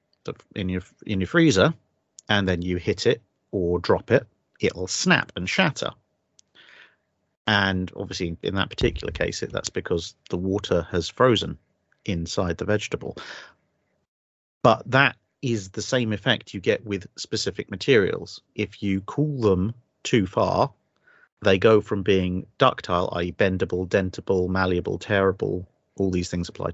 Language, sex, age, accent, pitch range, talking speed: English, male, 40-59, British, 90-105 Hz, 140 wpm